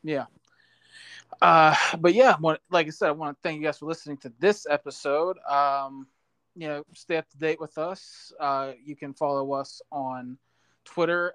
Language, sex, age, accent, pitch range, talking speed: English, male, 20-39, American, 135-160 Hz, 180 wpm